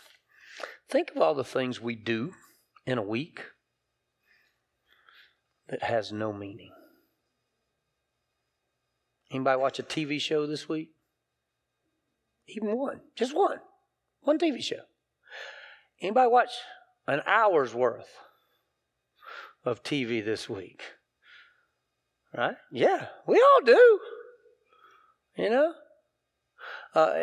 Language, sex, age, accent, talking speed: English, male, 40-59, American, 100 wpm